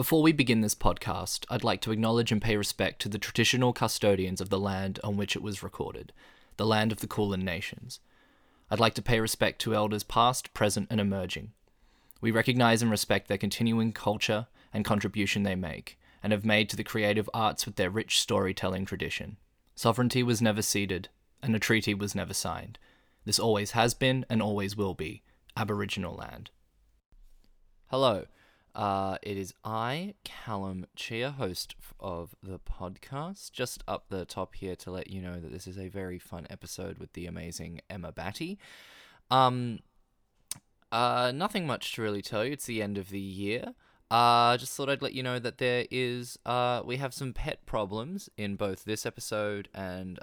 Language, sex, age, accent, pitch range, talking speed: English, male, 20-39, Australian, 95-120 Hz, 185 wpm